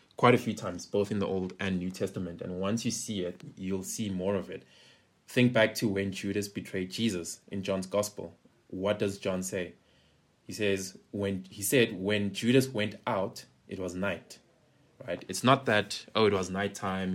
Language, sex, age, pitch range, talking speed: English, male, 20-39, 90-110 Hz, 195 wpm